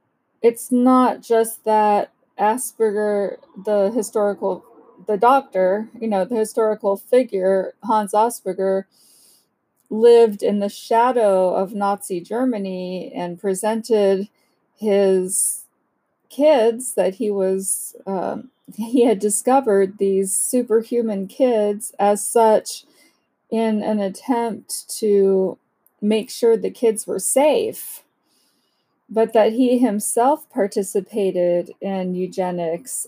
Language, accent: English, American